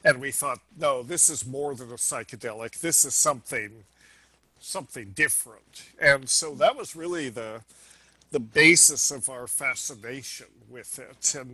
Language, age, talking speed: English, 50-69, 150 wpm